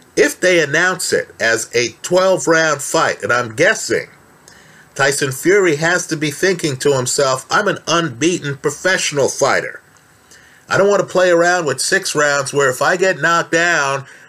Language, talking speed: English, 165 wpm